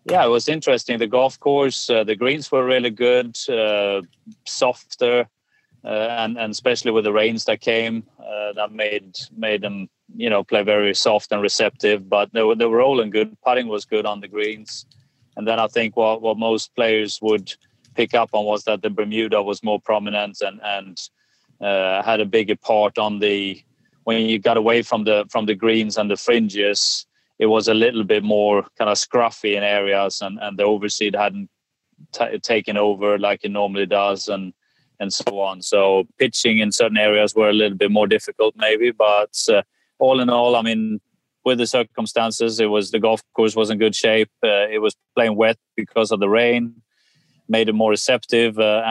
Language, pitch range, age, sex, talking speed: English, 105-115 Hz, 30-49, male, 200 wpm